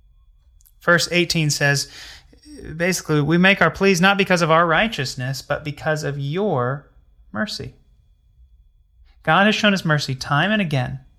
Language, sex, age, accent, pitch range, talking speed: English, male, 30-49, American, 105-165 Hz, 140 wpm